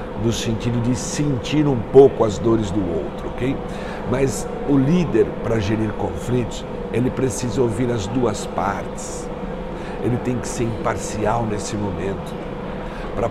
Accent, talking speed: Brazilian, 140 wpm